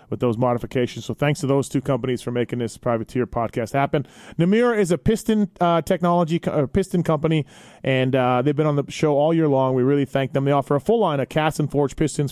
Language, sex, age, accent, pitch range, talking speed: English, male, 30-49, American, 130-160 Hz, 240 wpm